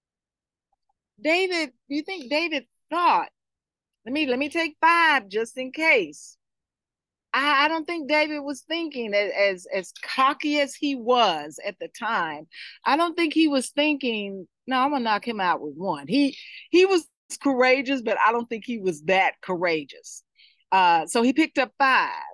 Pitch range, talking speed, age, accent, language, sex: 180-305 Hz, 170 wpm, 40-59, American, English, female